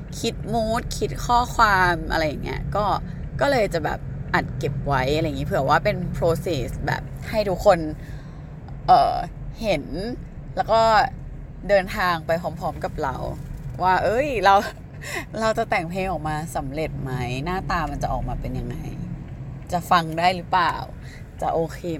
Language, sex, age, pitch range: Thai, female, 20-39, 140-180 Hz